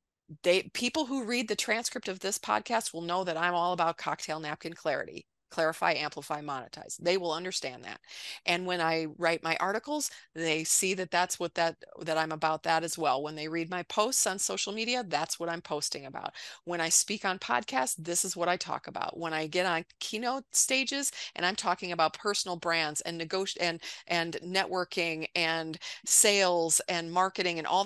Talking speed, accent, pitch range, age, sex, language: 195 wpm, American, 160-190 Hz, 40-59, female, English